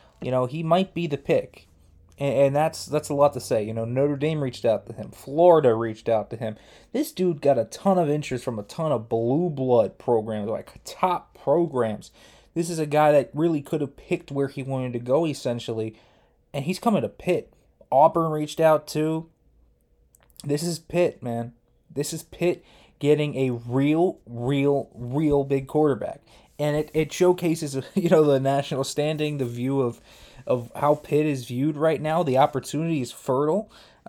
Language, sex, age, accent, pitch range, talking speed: English, male, 20-39, American, 125-165 Hz, 190 wpm